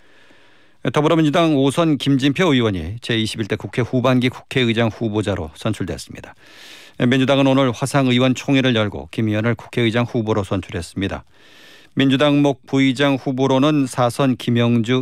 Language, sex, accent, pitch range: Korean, male, native, 110-135 Hz